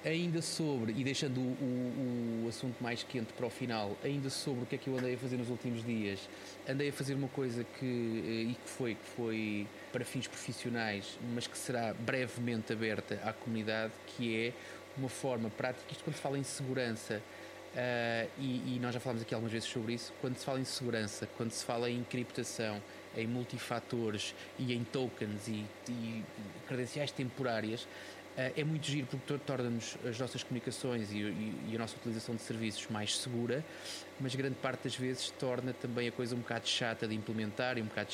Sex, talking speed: male, 190 wpm